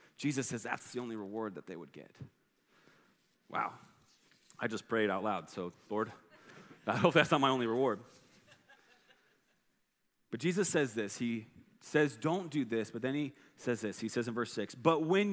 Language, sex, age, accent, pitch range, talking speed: English, male, 30-49, American, 130-195 Hz, 180 wpm